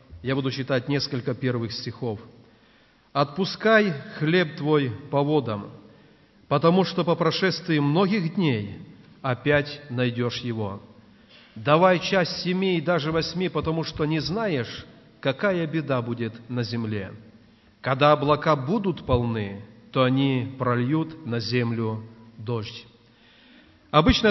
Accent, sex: native, male